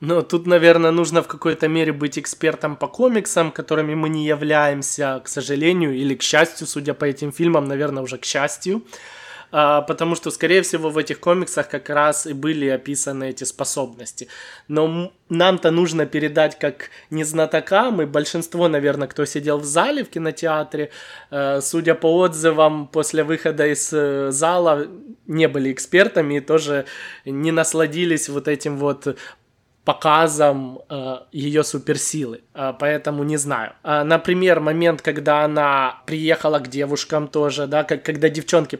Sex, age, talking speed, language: male, 20-39, 150 wpm, Russian